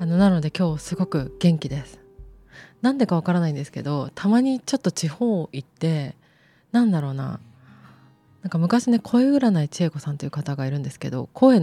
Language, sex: Japanese, female